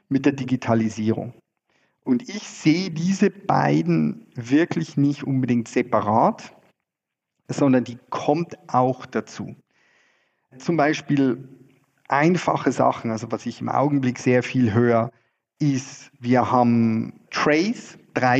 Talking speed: 110 wpm